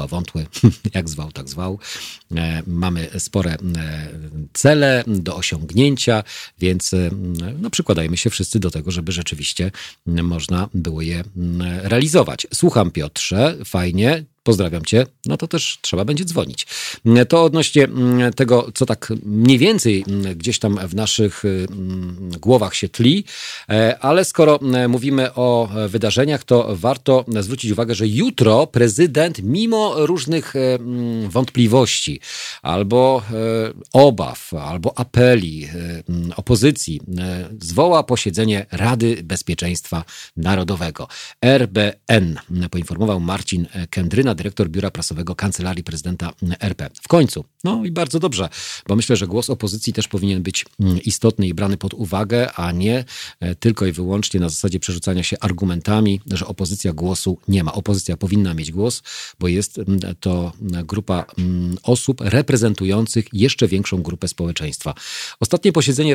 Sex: male